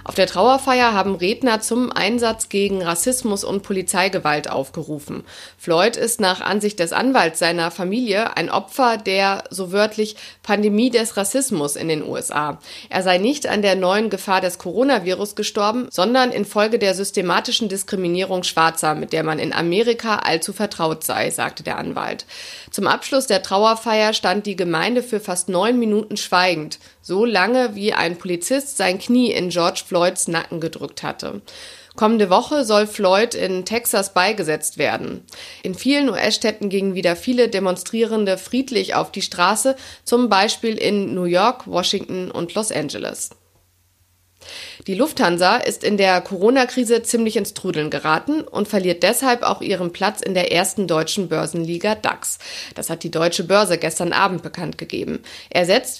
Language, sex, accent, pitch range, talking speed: German, female, German, 175-225 Hz, 155 wpm